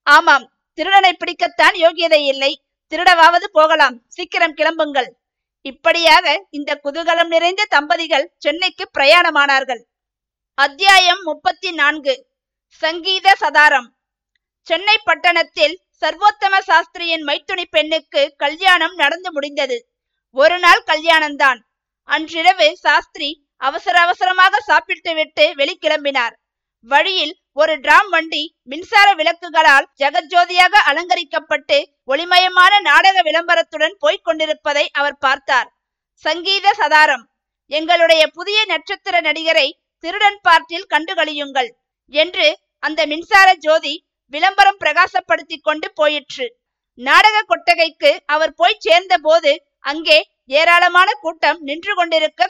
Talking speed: 85 wpm